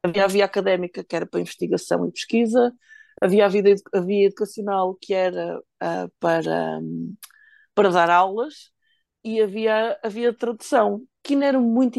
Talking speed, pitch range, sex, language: 180 wpm, 180-220 Hz, female, English